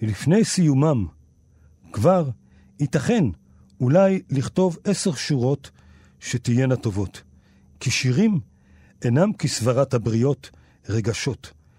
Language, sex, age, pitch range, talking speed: Hebrew, male, 50-69, 110-165 Hz, 80 wpm